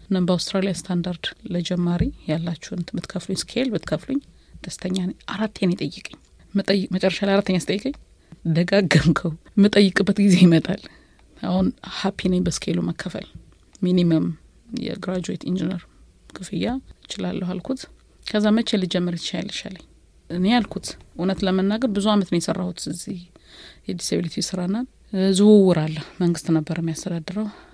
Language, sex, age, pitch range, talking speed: Amharic, female, 30-49, 175-200 Hz, 100 wpm